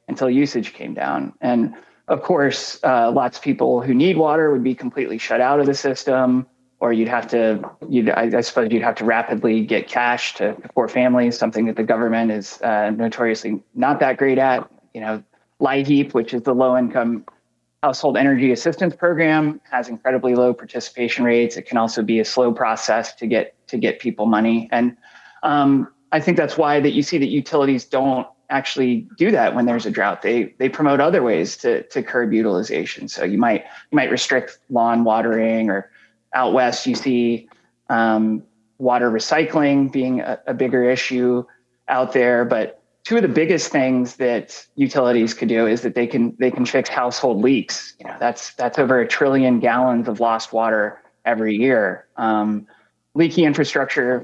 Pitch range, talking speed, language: 115-135 Hz, 180 wpm, English